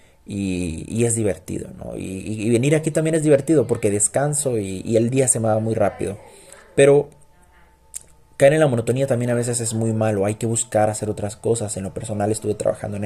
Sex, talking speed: male, 215 wpm